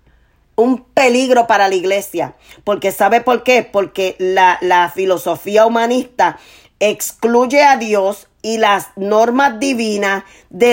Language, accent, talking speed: Spanish, American, 125 wpm